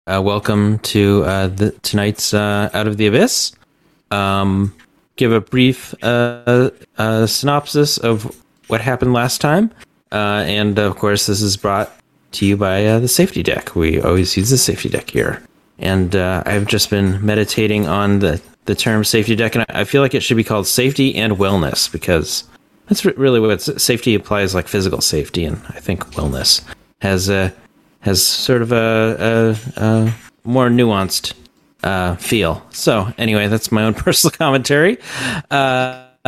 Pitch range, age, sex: 100-125 Hz, 30-49, male